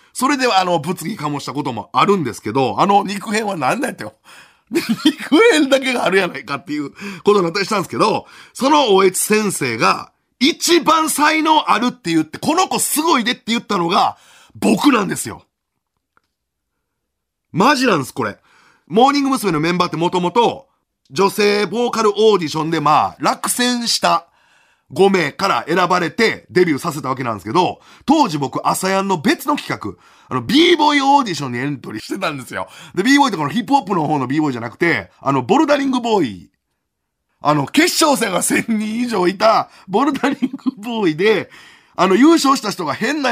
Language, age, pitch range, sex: Japanese, 40-59, 165-265 Hz, male